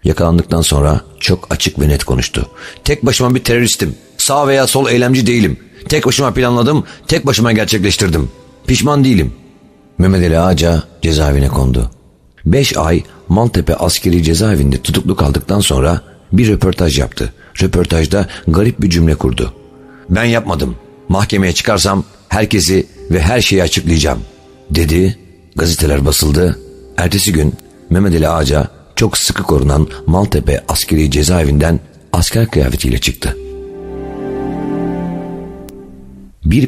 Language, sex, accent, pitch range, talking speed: Turkish, male, native, 75-100 Hz, 120 wpm